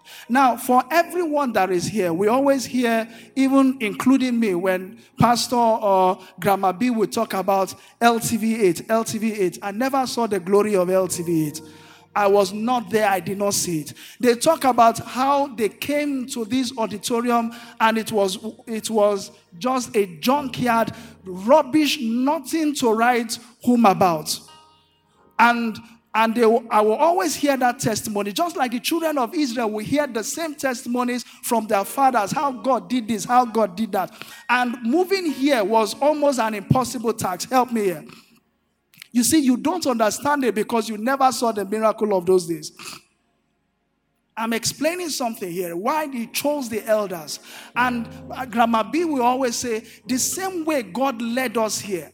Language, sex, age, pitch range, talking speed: English, male, 50-69, 205-260 Hz, 165 wpm